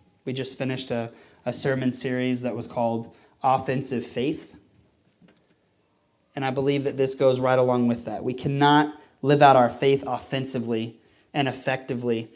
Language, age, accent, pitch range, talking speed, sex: English, 30-49, American, 120-135 Hz, 150 wpm, male